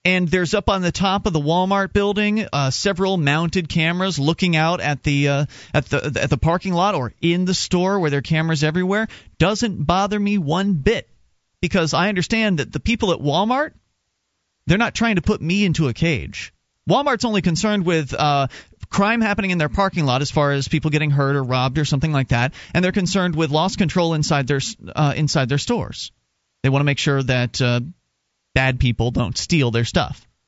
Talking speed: 205 wpm